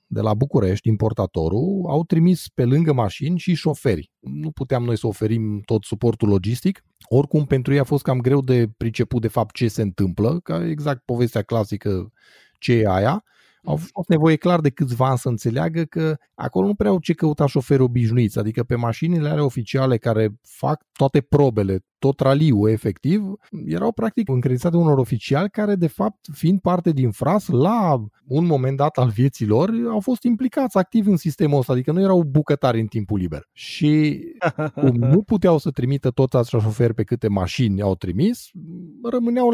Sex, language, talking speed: male, Romanian, 180 wpm